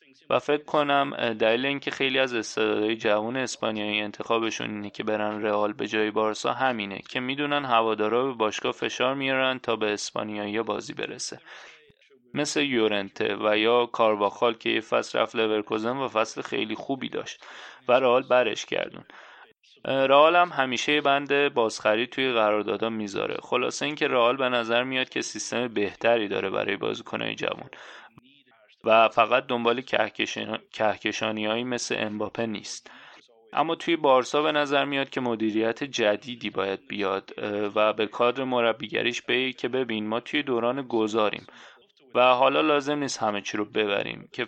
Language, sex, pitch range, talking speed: Persian, male, 110-130 Hz, 145 wpm